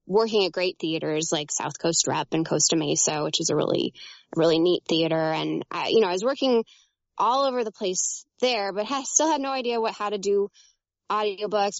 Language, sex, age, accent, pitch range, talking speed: English, female, 10-29, American, 175-225 Hz, 210 wpm